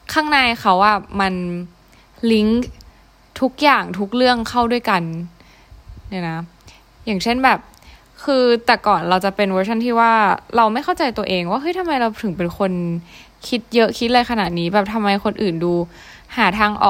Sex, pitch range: female, 185-235 Hz